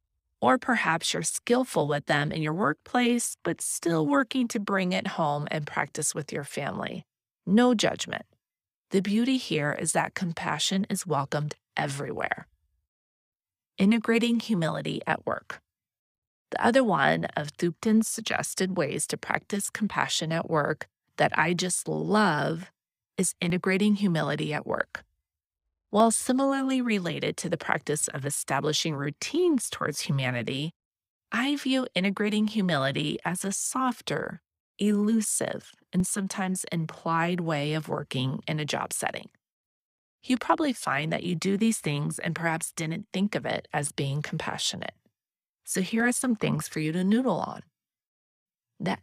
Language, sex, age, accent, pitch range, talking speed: English, female, 30-49, American, 150-220 Hz, 140 wpm